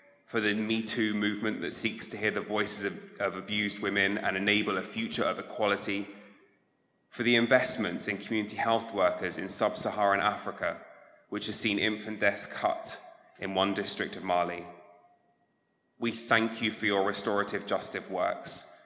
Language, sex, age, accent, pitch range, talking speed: English, male, 20-39, British, 100-110 Hz, 160 wpm